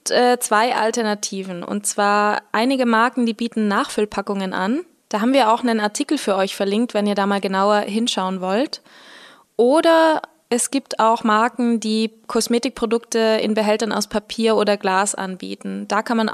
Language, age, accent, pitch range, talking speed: German, 20-39, German, 205-240 Hz, 160 wpm